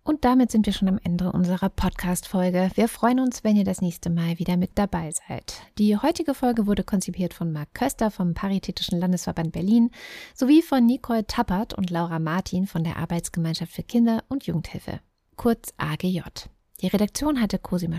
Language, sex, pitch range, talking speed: German, female, 170-220 Hz, 175 wpm